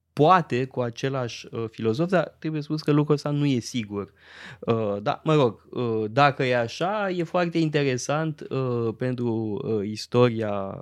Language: Romanian